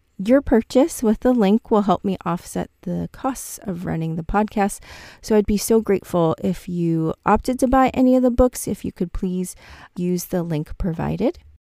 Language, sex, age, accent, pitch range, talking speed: English, female, 30-49, American, 170-210 Hz, 190 wpm